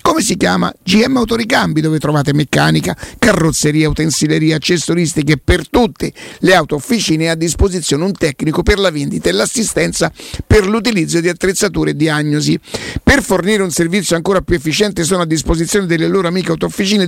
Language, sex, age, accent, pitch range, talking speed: Italian, male, 50-69, native, 160-195 Hz, 160 wpm